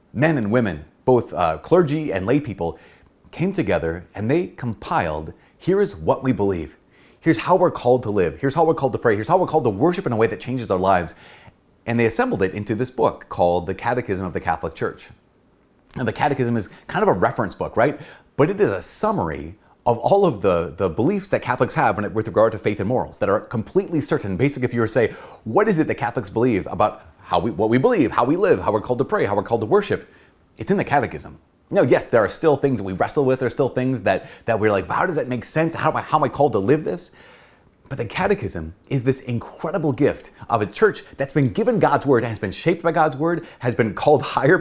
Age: 30-49